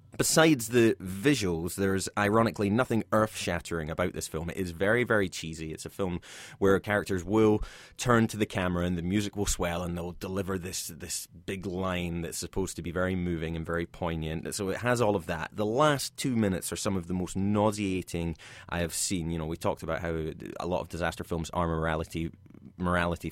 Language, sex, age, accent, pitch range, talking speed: English, male, 20-39, British, 85-105 Hz, 205 wpm